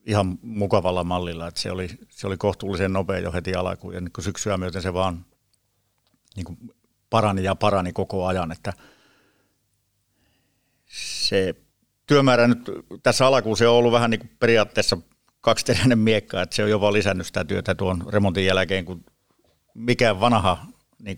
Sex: male